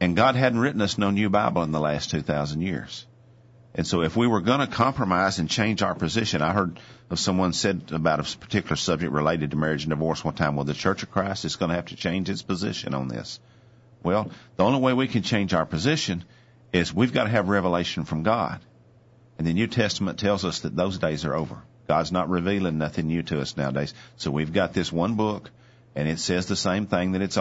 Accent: American